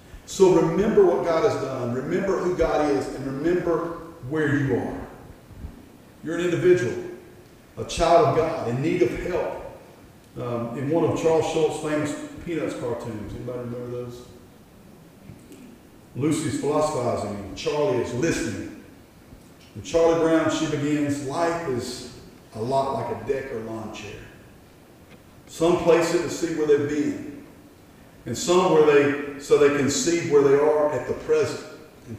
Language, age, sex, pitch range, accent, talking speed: English, 50-69, male, 125-160 Hz, American, 150 wpm